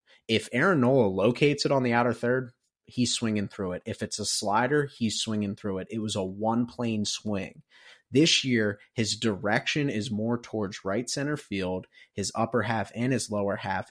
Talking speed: 190 wpm